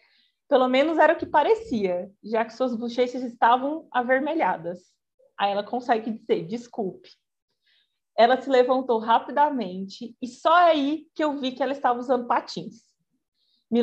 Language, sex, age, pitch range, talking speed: Portuguese, female, 20-39, 225-280 Hz, 145 wpm